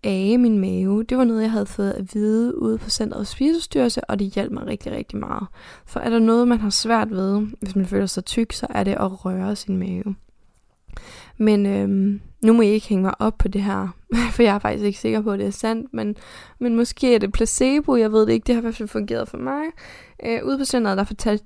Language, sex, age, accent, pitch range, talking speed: Danish, female, 10-29, native, 195-230 Hz, 245 wpm